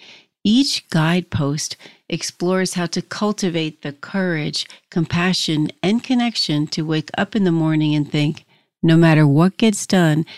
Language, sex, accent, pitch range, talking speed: English, female, American, 155-185 Hz, 140 wpm